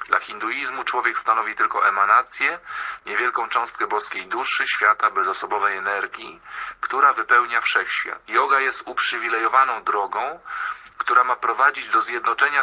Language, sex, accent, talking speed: Polish, male, native, 120 wpm